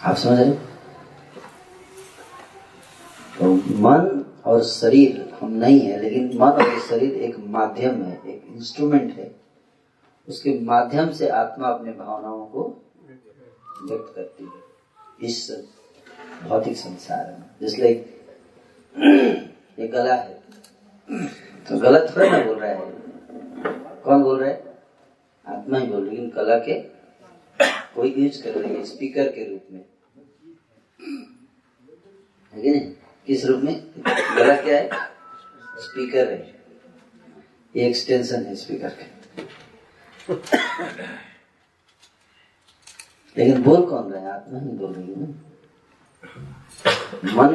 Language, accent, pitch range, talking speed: Hindi, native, 115-150 Hz, 110 wpm